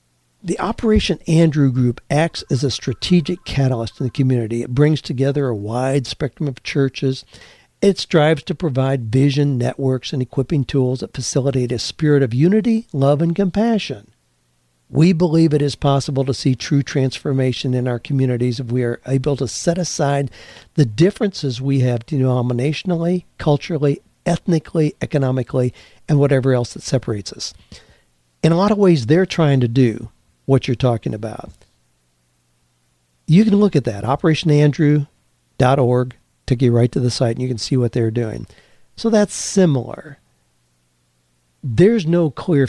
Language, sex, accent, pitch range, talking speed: English, male, American, 120-150 Hz, 155 wpm